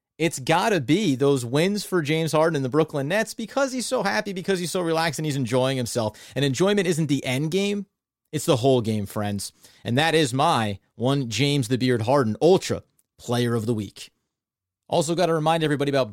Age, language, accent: 30-49, English, American